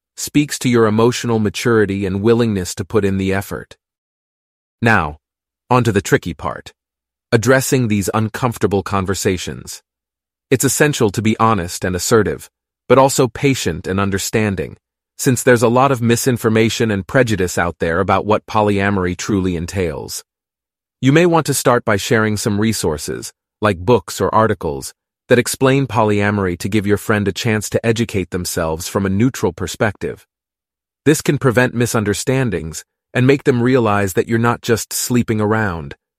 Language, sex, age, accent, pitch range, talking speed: English, male, 30-49, American, 95-125 Hz, 155 wpm